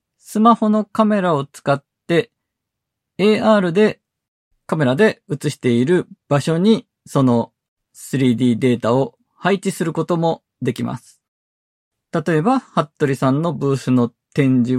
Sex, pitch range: male, 130-190 Hz